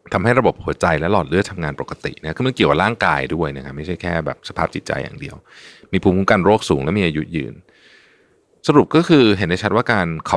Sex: male